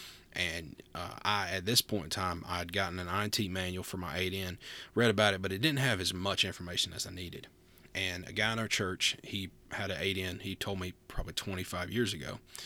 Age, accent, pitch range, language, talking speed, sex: 30-49, American, 90-110 Hz, English, 220 wpm, male